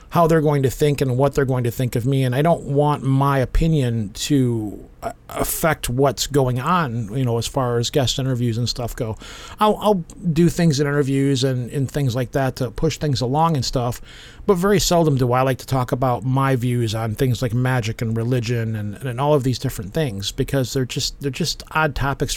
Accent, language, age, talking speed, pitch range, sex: American, English, 40-59, 220 wpm, 125-150 Hz, male